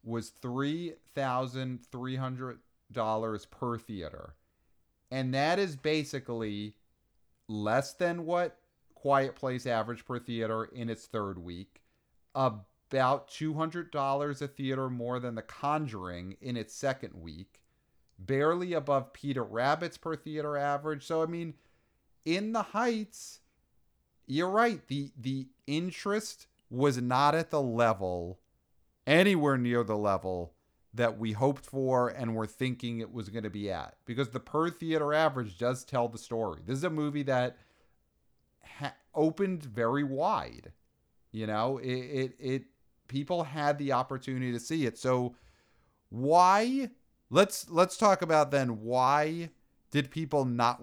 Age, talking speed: 40-59, 135 wpm